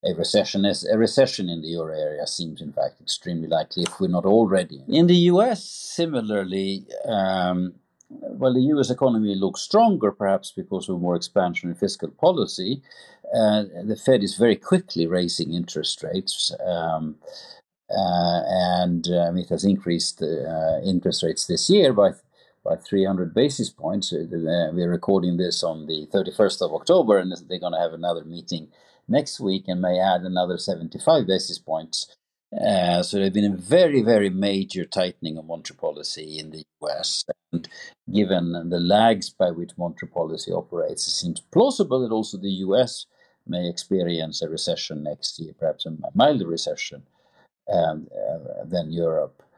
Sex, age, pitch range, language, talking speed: male, 50-69, 85-100 Hz, English, 170 wpm